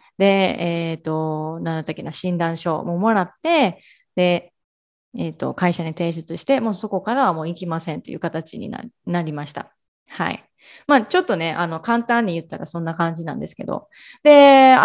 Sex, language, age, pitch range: female, Japanese, 20-39, 165-265 Hz